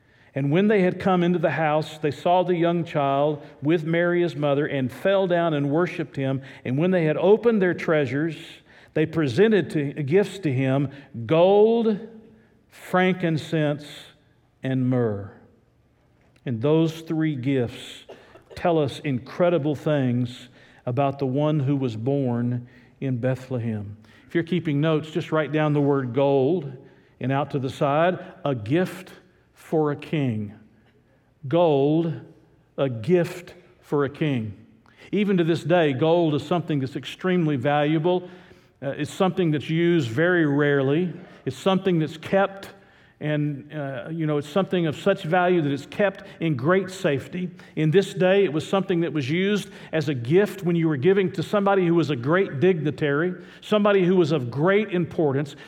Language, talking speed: English, 160 wpm